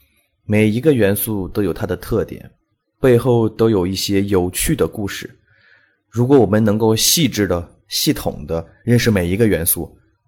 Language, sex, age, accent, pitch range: Chinese, male, 20-39, native, 85-110 Hz